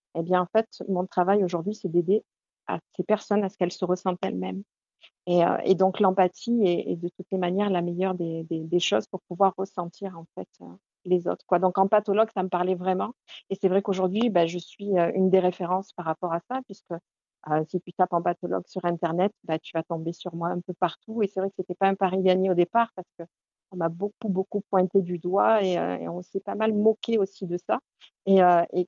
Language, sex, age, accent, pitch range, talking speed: French, female, 50-69, French, 180-220 Hz, 245 wpm